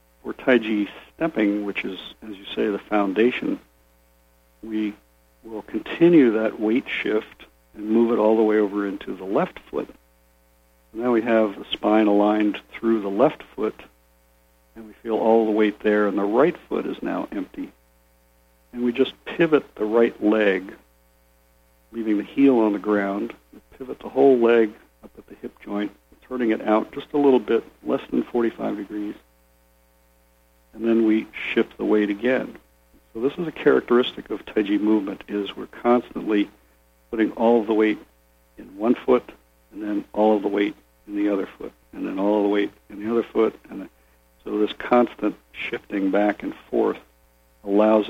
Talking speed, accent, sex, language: 175 wpm, American, male, English